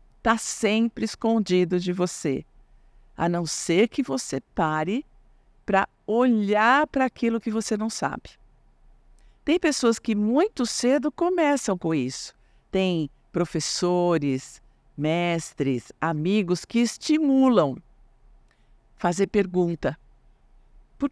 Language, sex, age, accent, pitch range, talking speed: Portuguese, female, 50-69, Brazilian, 140-225 Hz, 100 wpm